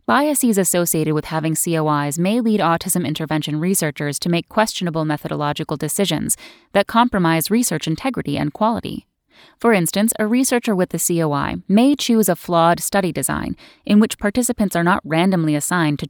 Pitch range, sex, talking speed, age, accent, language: 155-215 Hz, female, 155 wpm, 10-29, American, English